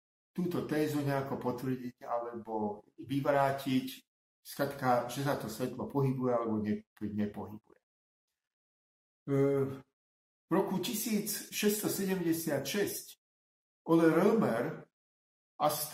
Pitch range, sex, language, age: 120-145 Hz, male, Slovak, 50-69